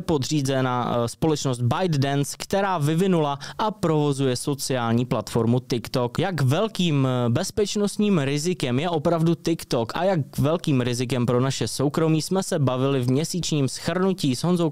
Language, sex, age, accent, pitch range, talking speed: Czech, male, 20-39, native, 130-180 Hz, 130 wpm